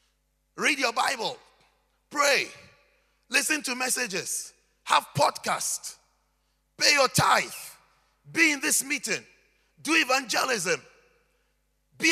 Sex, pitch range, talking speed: male, 195-305 Hz, 95 wpm